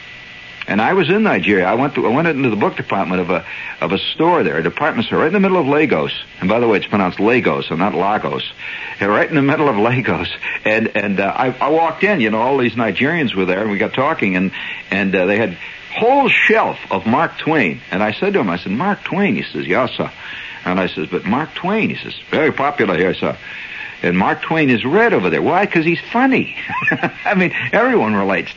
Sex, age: male, 60-79